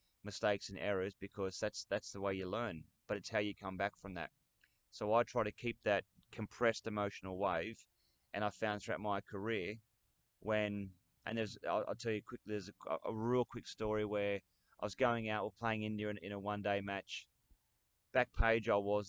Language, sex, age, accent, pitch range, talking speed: English, male, 20-39, Australian, 100-115 Hz, 205 wpm